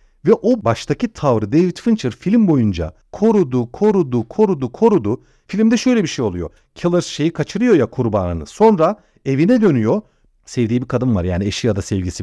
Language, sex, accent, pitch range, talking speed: Turkish, male, native, 120-195 Hz, 165 wpm